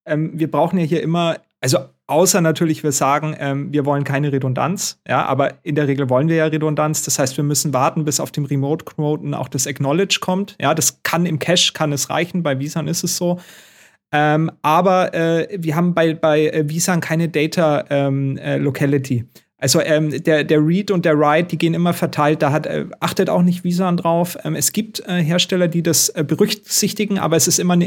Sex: male